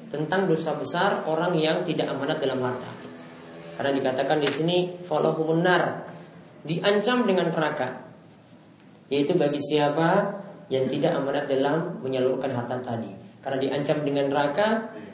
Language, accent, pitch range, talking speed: Indonesian, native, 140-170 Hz, 125 wpm